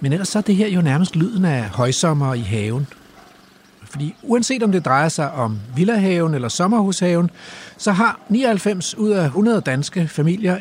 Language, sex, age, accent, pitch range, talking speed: Danish, male, 60-79, native, 125-180 Hz, 175 wpm